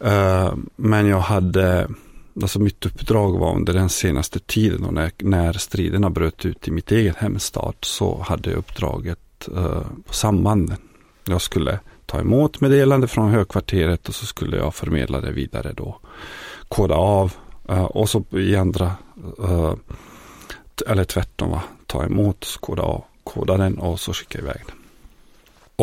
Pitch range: 90-110 Hz